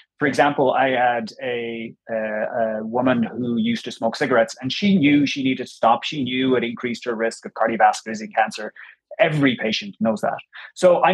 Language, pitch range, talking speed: English, 125-170 Hz, 200 wpm